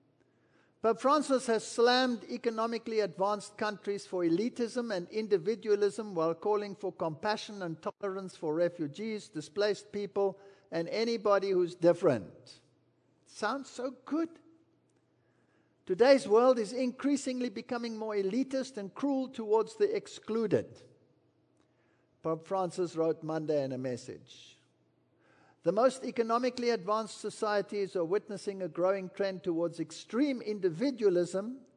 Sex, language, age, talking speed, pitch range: male, English, 50-69, 115 wpm, 170-225 Hz